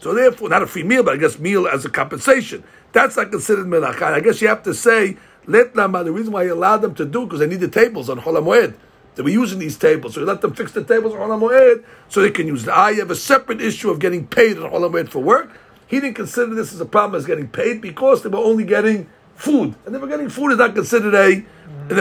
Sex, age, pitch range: male, 60-79, 195-265 Hz